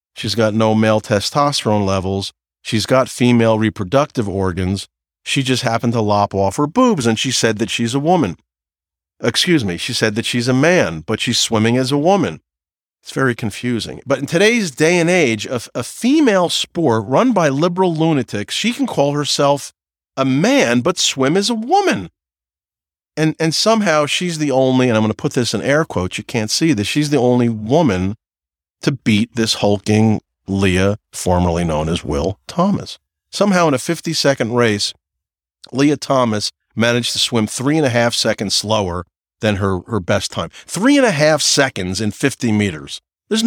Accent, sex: American, male